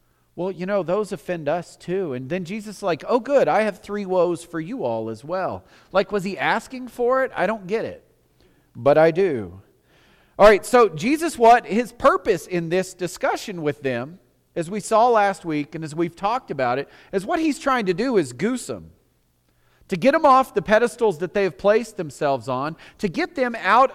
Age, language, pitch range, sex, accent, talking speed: 40-59, English, 145-215 Hz, male, American, 210 wpm